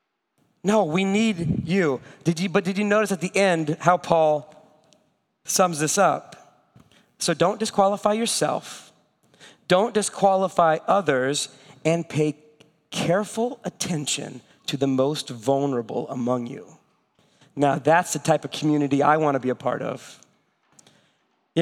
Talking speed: 135 wpm